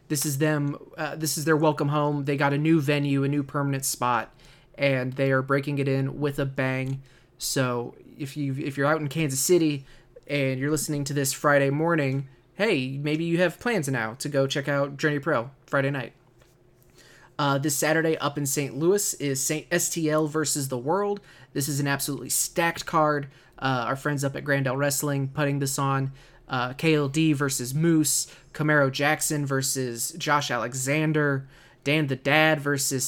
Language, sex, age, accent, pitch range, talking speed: English, male, 20-39, American, 135-155 Hz, 180 wpm